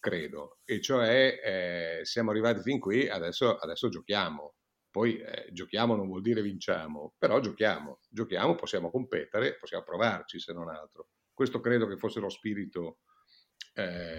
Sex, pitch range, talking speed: male, 100-130 Hz, 150 wpm